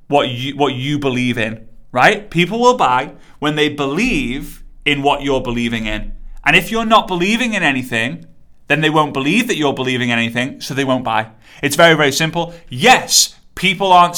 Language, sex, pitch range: English, male, 140-190 Hz